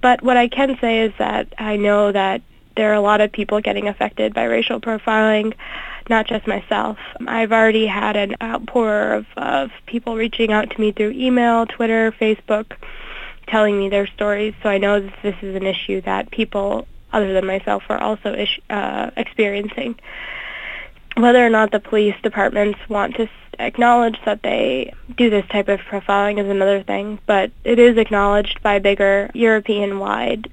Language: German